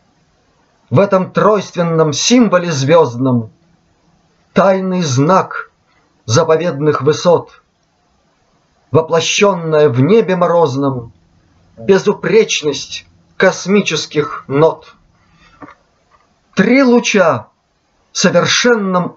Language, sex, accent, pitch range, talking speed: Russian, male, native, 140-195 Hz, 65 wpm